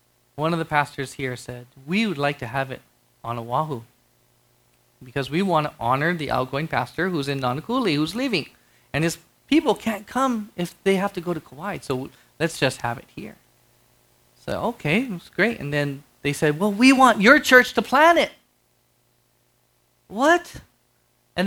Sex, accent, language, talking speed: male, American, English, 175 wpm